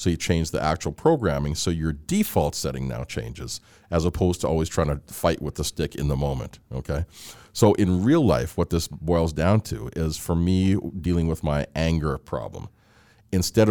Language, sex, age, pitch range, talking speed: English, male, 40-59, 75-95 Hz, 195 wpm